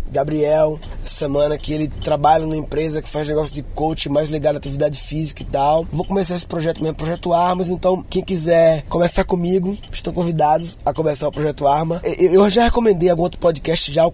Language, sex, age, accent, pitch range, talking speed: Portuguese, male, 20-39, Brazilian, 160-185 Hz, 195 wpm